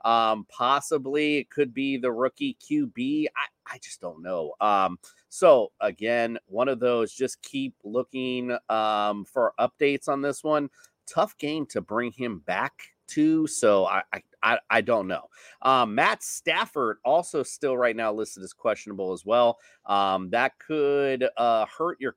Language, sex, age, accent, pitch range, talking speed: English, male, 30-49, American, 105-145 Hz, 160 wpm